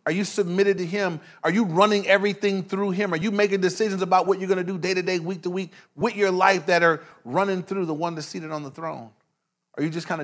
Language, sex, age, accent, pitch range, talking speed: English, male, 30-49, American, 155-190 Hz, 265 wpm